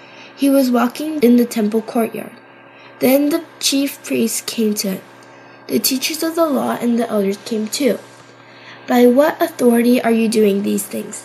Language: Korean